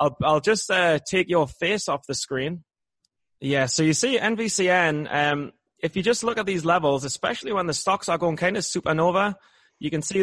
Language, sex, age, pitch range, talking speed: English, male, 20-39, 145-190 Hz, 205 wpm